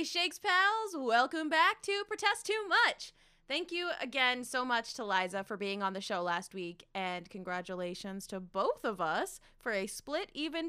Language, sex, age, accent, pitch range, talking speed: English, female, 20-39, American, 200-295 Hz, 180 wpm